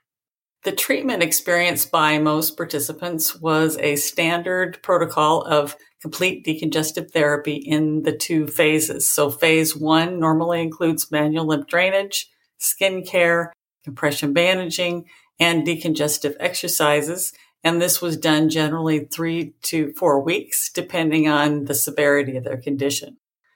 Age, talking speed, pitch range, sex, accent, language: 50-69, 125 wpm, 155-185 Hz, female, American, English